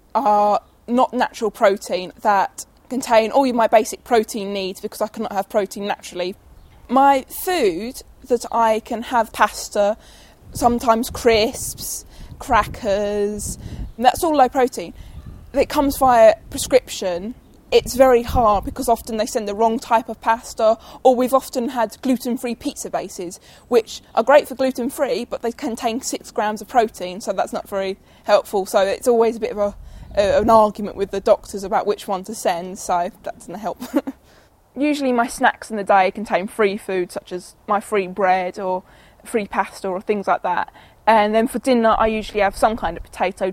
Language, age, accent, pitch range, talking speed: English, 20-39, British, 200-250 Hz, 175 wpm